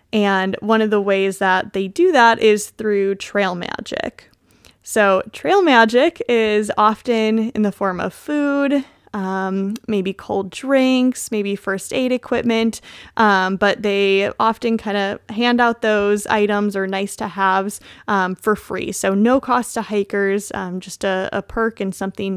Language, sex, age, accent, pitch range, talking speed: English, female, 20-39, American, 195-235 Hz, 160 wpm